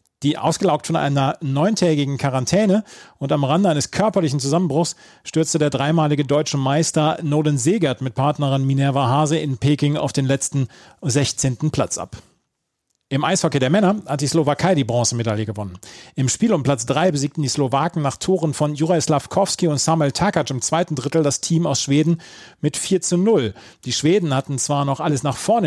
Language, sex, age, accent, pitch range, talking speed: German, male, 40-59, German, 140-170 Hz, 180 wpm